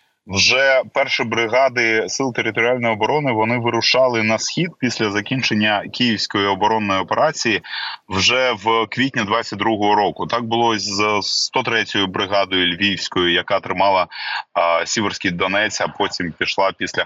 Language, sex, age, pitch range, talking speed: Ukrainian, male, 20-39, 100-130 Hz, 125 wpm